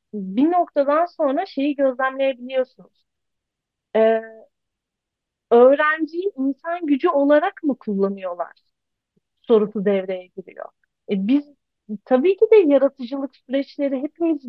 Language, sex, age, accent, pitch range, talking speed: Turkish, female, 40-59, native, 210-305 Hz, 95 wpm